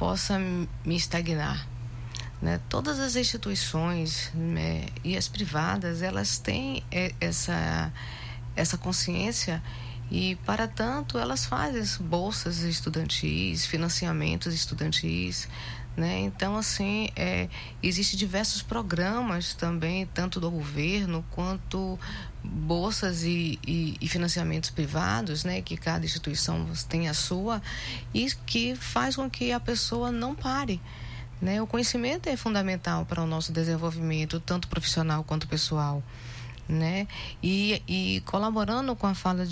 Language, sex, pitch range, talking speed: Portuguese, female, 125-180 Hz, 115 wpm